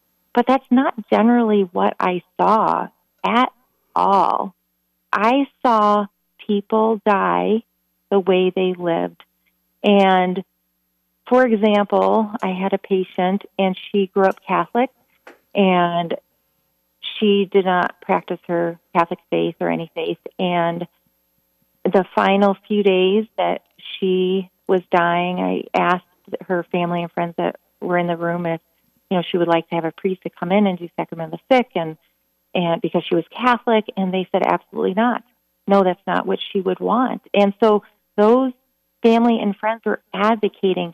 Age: 40-59